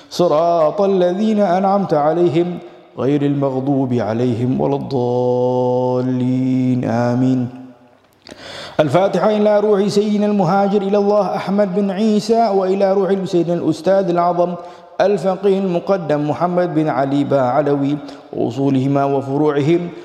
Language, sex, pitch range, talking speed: Malay, male, 130-175 Hz, 100 wpm